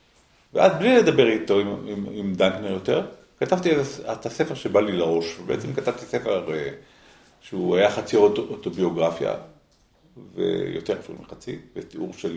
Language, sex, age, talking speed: Hebrew, male, 50-69, 130 wpm